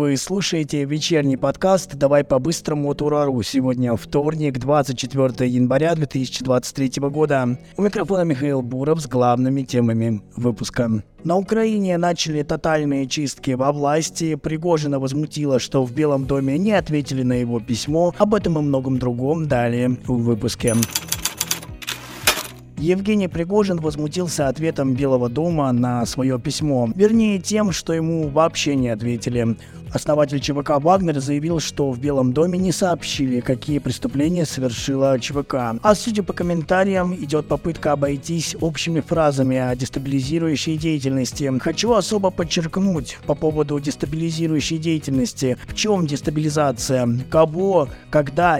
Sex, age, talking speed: male, 20-39, 125 wpm